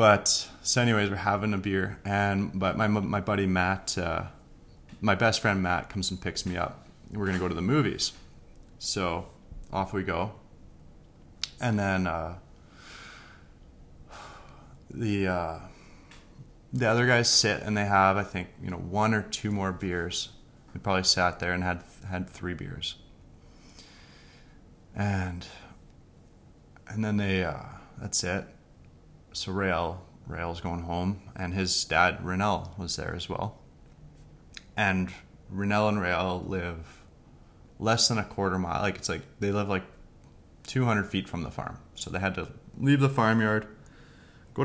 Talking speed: 150 wpm